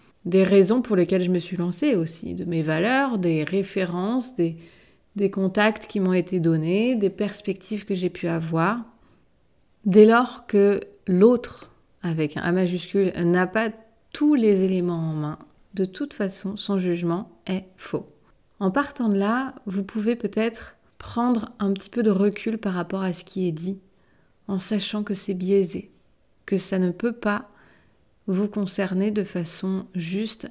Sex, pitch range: female, 170-205 Hz